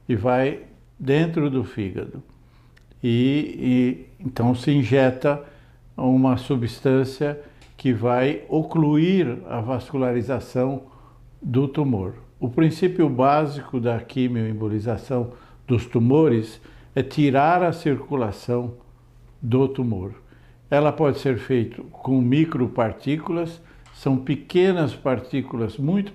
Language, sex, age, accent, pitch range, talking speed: Portuguese, male, 60-79, Brazilian, 125-145 Hz, 95 wpm